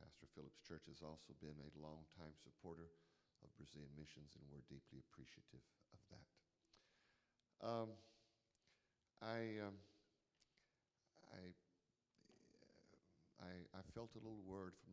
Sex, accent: male, American